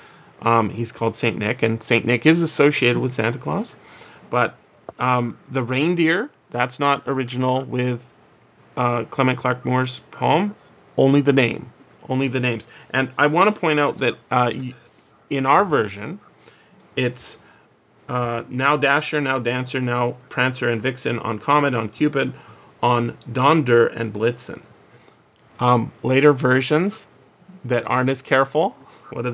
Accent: American